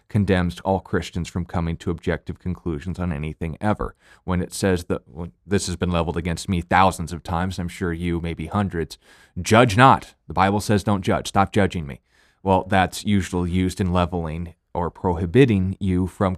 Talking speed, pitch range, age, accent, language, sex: 180 wpm, 85-100 Hz, 20-39, American, English, male